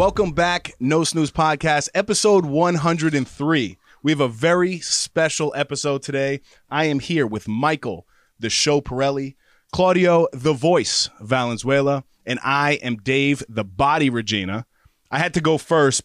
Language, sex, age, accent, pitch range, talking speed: English, male, 20-39, American, 130-155 Hz, 140 wpm